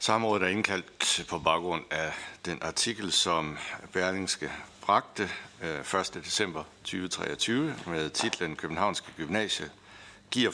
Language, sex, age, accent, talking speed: Danish, male, 60-79, native, 110 wpm